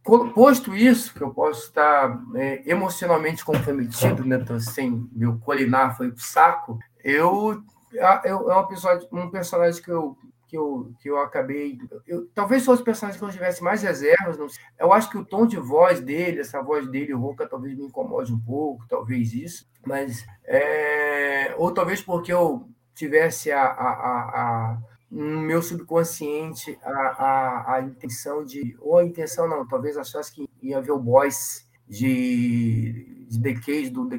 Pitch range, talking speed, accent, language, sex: 130-190 Hz, 170 wpm, Brazilian, Portuguese, male